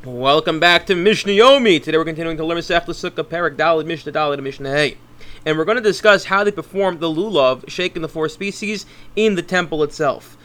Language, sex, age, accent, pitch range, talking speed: English, male, 30-49, American, 155-205 Hz, 185 wpm